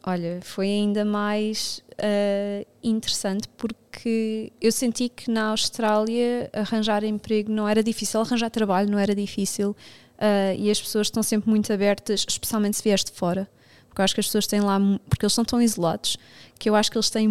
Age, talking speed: 20-39, 185 wpm